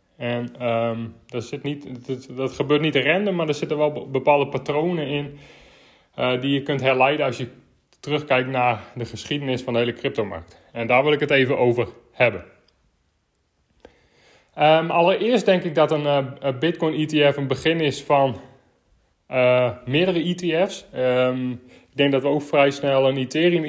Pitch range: 125-150 Hz